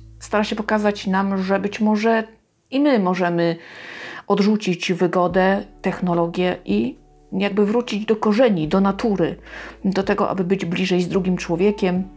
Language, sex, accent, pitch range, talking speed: Polish, female, native, 180-215 Hz, 140 wpm